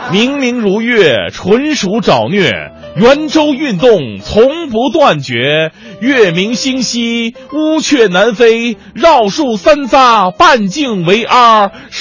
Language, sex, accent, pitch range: Chinese, male, native, 150-240 Hz